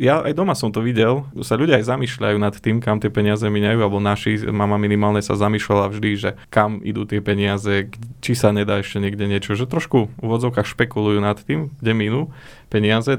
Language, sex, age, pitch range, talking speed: Slovak, male, 20-39, 105-120 Hz, 195 wpm